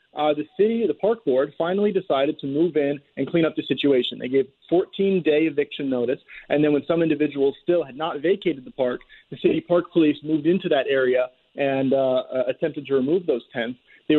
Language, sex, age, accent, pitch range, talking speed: English, male, 30-49, American, 140-190 Hz, 205 wpm